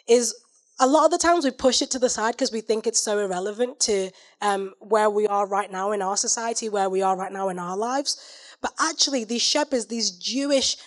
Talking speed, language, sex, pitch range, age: 230 wpm, English, female, 225-280 Hz, 20-39